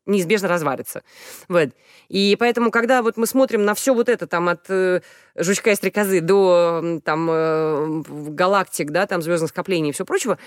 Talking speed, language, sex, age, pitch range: 140 wpm, Russian, female, 20-39, 175-235 Hz